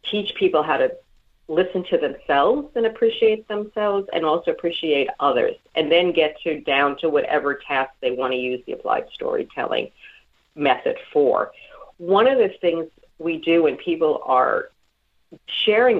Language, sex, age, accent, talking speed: English, female, 40-59, American, 155 wpm